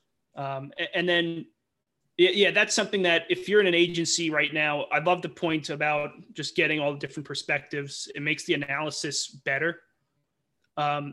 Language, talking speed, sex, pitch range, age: English, 165 wpm, male, 145-170 Hz, 30-49